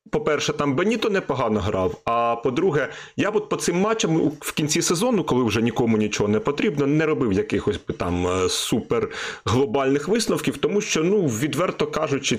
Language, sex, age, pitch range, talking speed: Ukrainian, male, 30-49, 130-185 Hz, 160 wpm